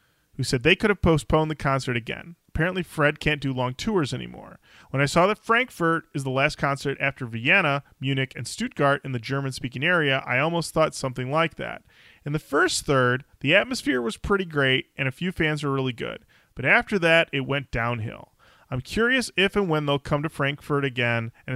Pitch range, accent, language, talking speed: 130-170 Hz, American, English, 205 wpm